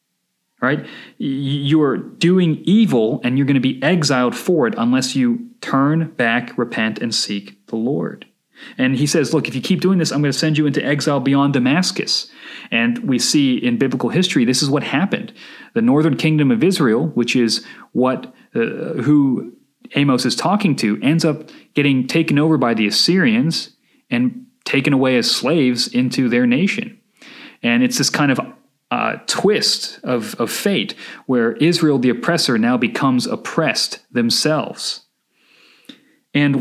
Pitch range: 140-220 Hz